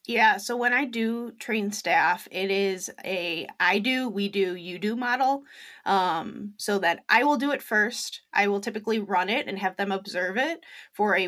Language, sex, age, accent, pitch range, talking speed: English, female, 20-39, American, 195-245 Hz, 195 wpm